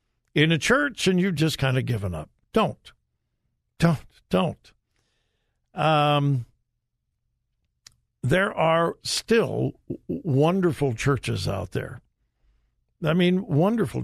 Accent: American